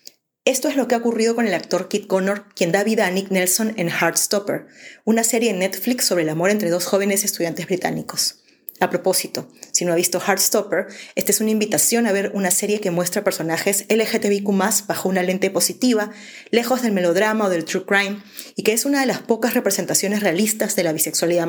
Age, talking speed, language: 30-49, 205 wpm, Spanish